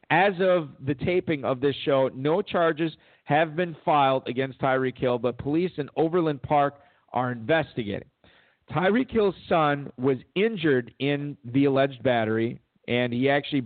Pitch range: 125-150 Hz